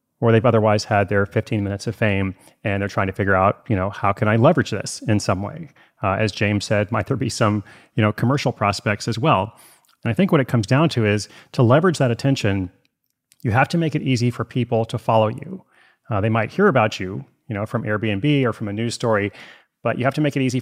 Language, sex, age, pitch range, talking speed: English, male, 30-49, 105-130 Hz, 245 wpm